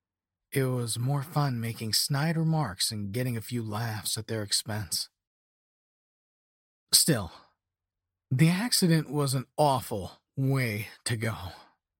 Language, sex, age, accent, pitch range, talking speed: English, male, 30-49, American, 100-140 Hz, 120 wpm